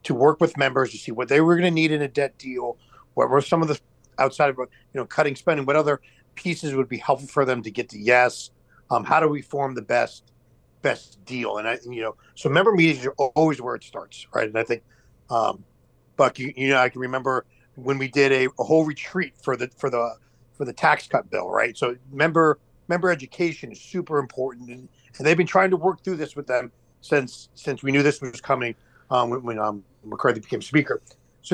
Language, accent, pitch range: English, American, 125-155 Hz